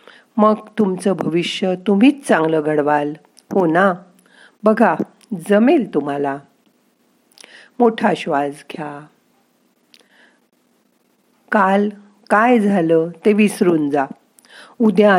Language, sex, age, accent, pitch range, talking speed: Marathi, female, 50-69, native, 160-225 Hz, 85 wpm